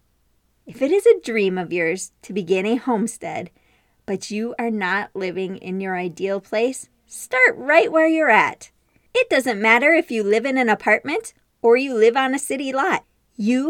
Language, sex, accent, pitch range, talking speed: English, female, American, 205-300 Hz, 185 wpm